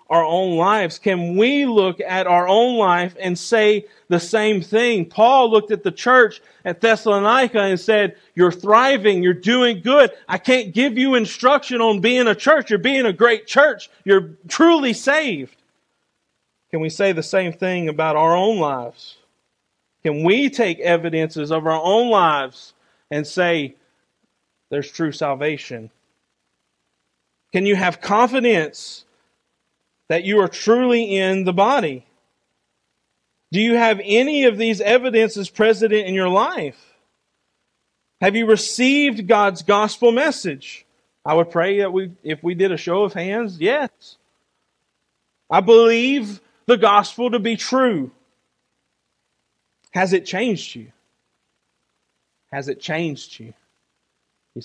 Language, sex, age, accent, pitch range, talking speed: English, male, 40-59, American, 165-230 Hz, 140 wpm